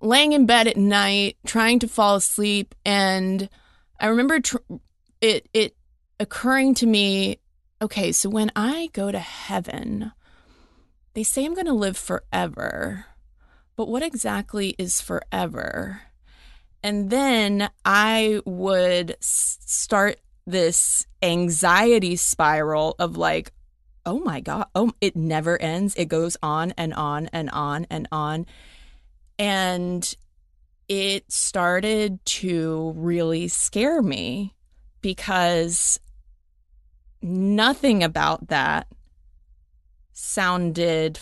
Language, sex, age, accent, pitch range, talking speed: English, female, 20-39, American, 155-210 Hz, 110 wpm